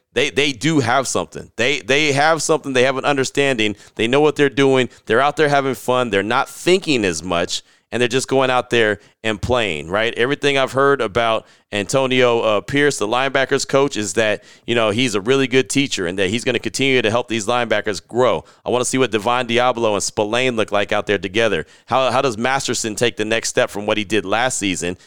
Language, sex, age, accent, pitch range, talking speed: English, male, 30-49, American, 110-135 Hz, 225 wpm